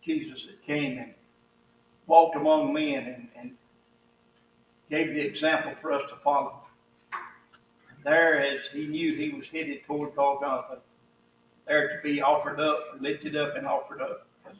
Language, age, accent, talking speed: English, 60-79, American, 150 wpm